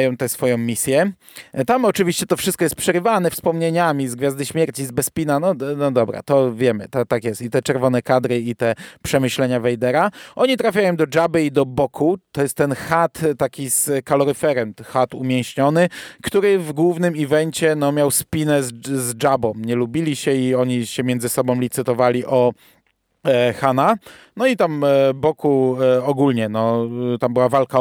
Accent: native